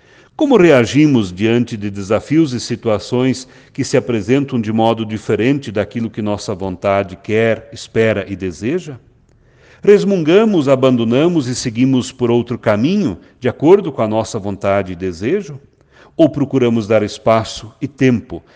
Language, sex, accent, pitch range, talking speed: Portuguese, male, Brazilian, 110-135 Hz, 135 wpm